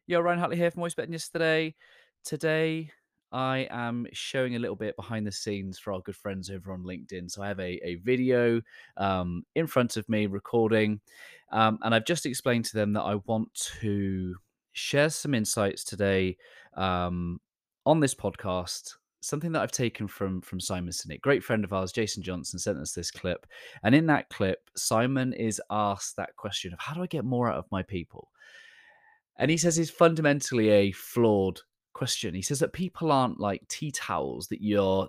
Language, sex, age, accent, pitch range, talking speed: English, male, 20-39, British, 95-150 Hz, 190 wpm